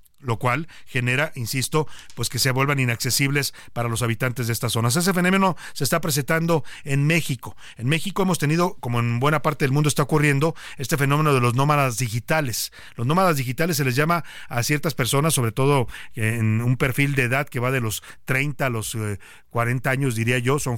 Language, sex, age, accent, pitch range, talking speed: Spanish, male, 40-59, Mexican, 125-155 Hz, 195 wpm